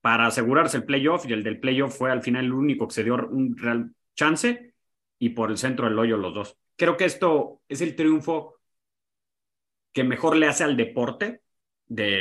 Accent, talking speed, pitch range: Mexican, 195 wpm, 115-150 Hz